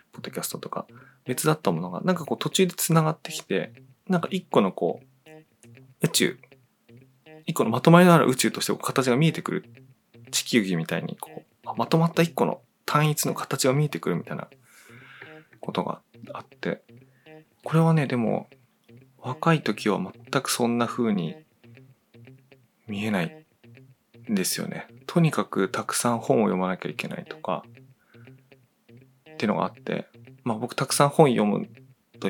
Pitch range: 115-155 Hz